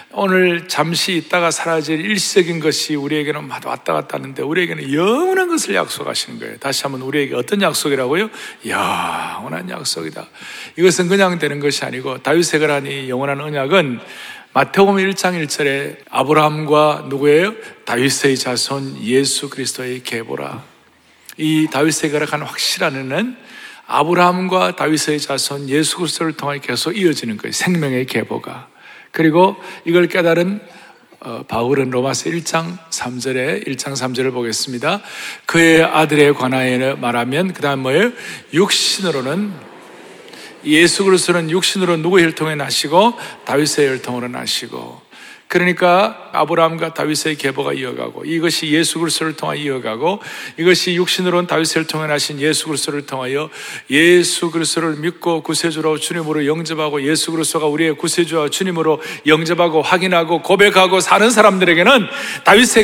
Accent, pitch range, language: native, 140-180 Hz, Korean